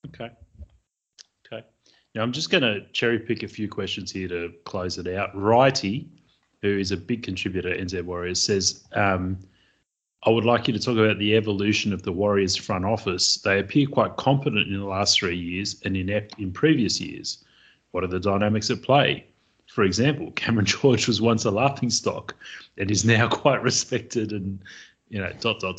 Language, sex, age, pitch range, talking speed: English, male, 30-49, 95-115 Hz, 190 wpm